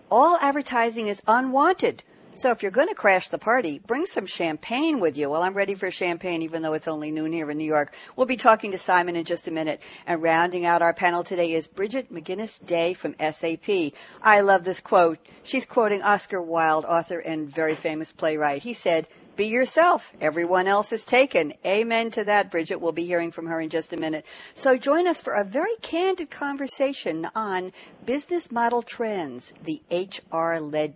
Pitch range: 160-230 Hz